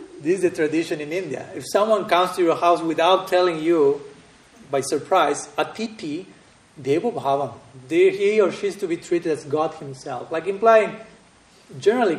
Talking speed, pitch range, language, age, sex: 160 wpm, 130-180 Hz, English, 30-49, male